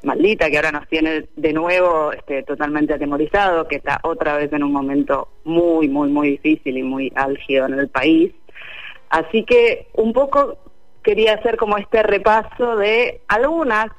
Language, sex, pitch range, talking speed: Spanish, female, 155-225 Hz, 160 wpm